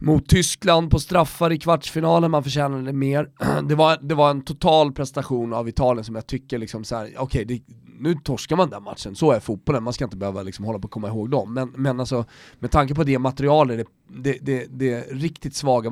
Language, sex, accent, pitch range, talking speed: Swedish, male, native, 125-170 Hz, 220 wpm